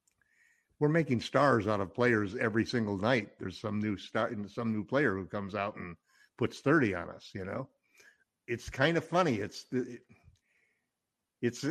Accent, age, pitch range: American, 50-69, 100-125 Hz